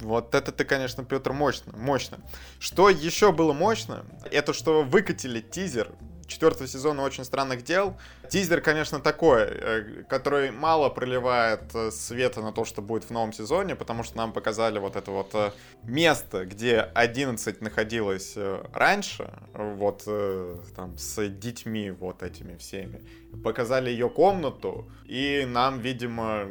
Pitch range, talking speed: 105-135 Hz, 135 wpm